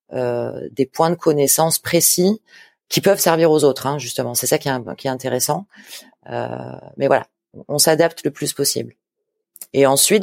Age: 30-49